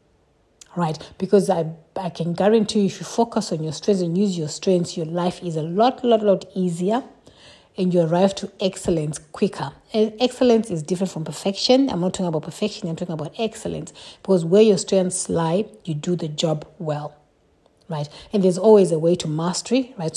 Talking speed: 195 wpm